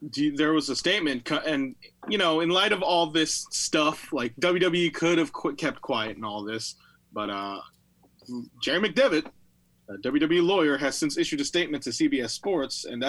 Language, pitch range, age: English, 125-170 Hz, 30-49